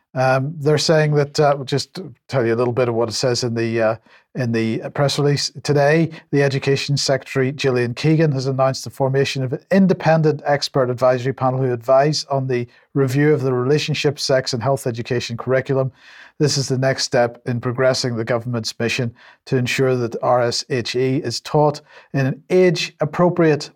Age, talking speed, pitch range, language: 50-69, 180 wpm, 125-150 Hz, English